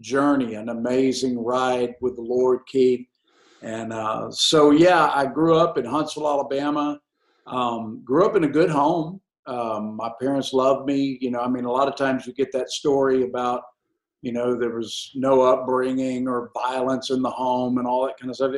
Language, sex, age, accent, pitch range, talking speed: English, male, 50-69, American, 125-140 Hz, 195 wpm